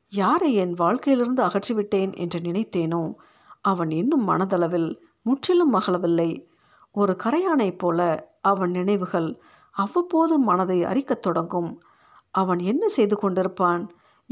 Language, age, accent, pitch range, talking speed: Tamil, 50-69, native, 175-250 Hz, 95 wpm